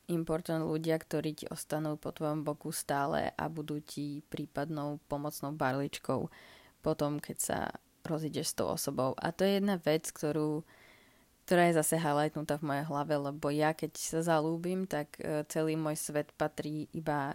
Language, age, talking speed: Slovak, 20-39, 160 wpm